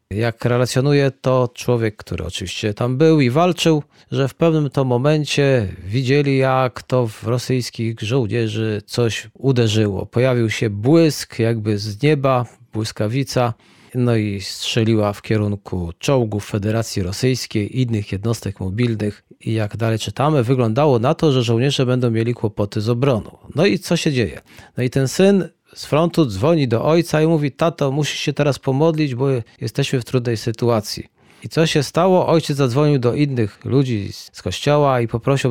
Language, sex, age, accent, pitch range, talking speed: Polish, male, 40-59, native, 115-145 Hz, 160 wpm